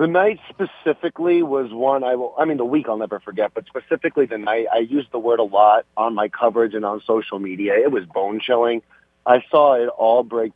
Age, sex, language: 30-49, male, English